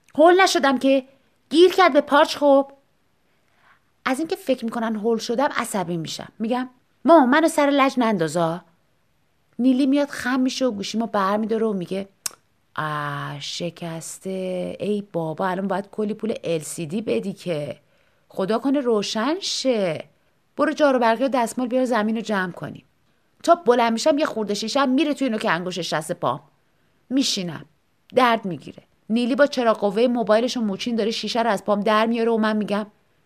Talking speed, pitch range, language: 155 wpm, 195-245 Hz, Persian